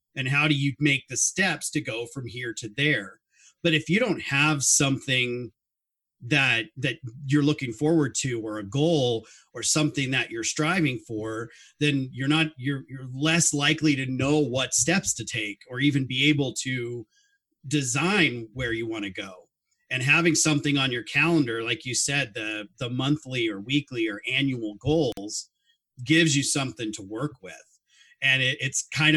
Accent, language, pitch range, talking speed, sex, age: American, English, 125-160 Hz, 175 wpm, male, 40-59